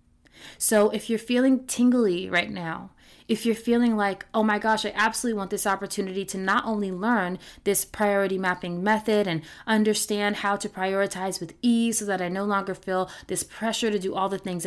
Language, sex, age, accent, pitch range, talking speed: English, female, 20-39, American, 190-220 Hz, 190 wpm